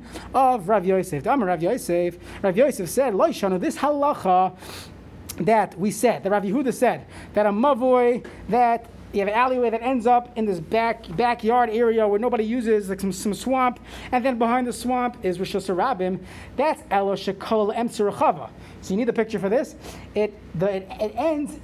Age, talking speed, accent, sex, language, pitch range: 30-49, 180 wpm, American, male, English, 195-250 Hz